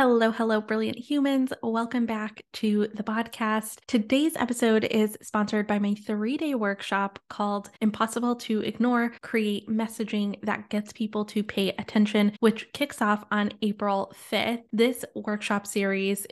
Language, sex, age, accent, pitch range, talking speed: English, female, 10-29, American, 210-240 Hz, 145 wpm